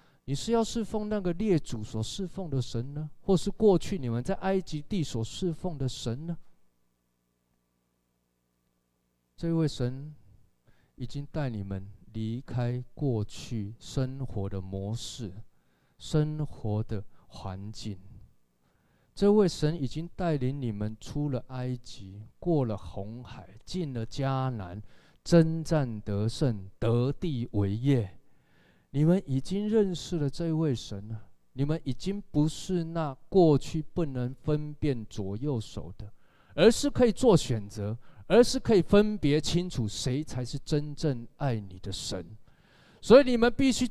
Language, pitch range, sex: Chinese, 105-160 Hz, male